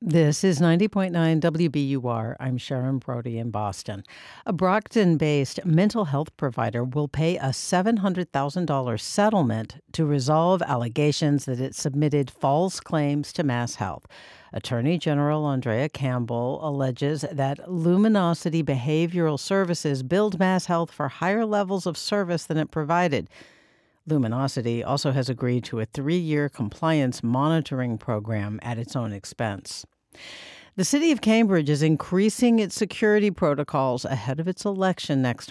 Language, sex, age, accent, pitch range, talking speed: English, female, 60-79, American, 135-180 Hz, 130 wpm